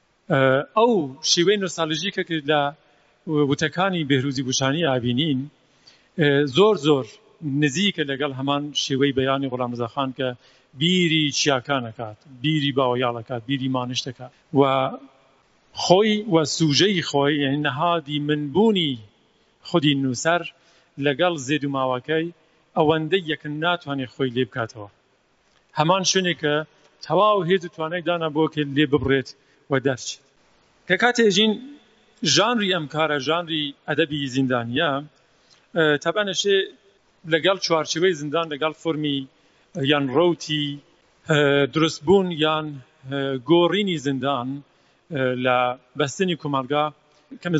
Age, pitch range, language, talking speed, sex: 50-69, 135-165 Hz, Persian, 100 wpm, male